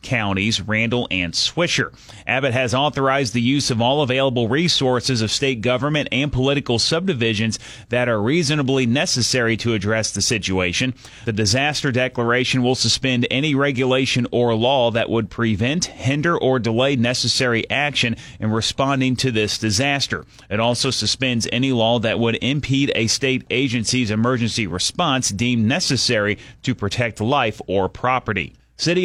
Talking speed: 145 wpm